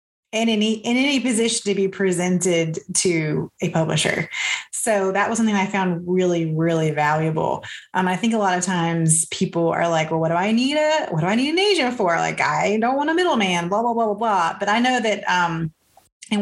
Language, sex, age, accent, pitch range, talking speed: English, female, 30-49, American, 170-205 Hz, 220 wpm